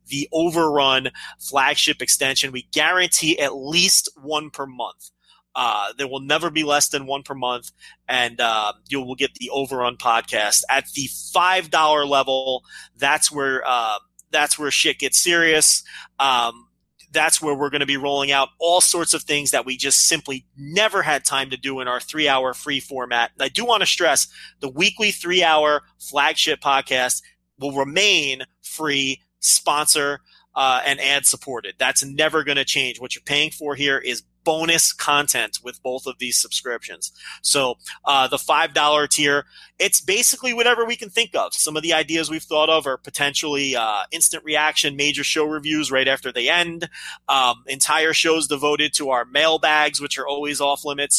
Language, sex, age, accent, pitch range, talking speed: English, male, 30-49, American, 135-155 Hz, 170 wpm